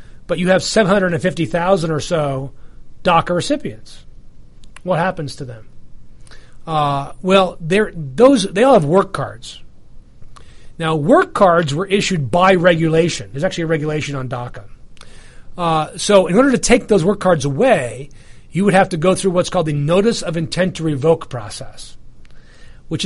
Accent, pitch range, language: American, 140-185 Hz, English